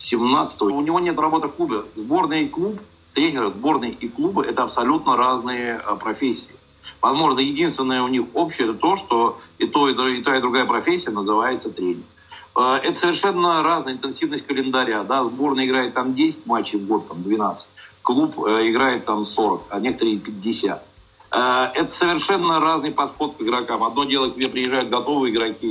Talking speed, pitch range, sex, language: 170 wpm, 125-165 Hz, male, Russian